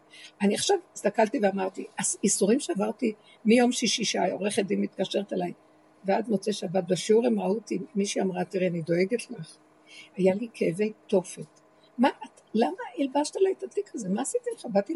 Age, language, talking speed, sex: 60-79, Hebrew, 165 wpm, female